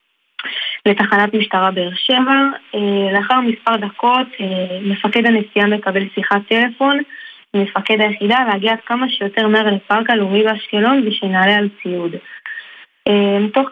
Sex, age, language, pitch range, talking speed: female, 20-39, Hebrew, 200-230 Hz, 120 wpm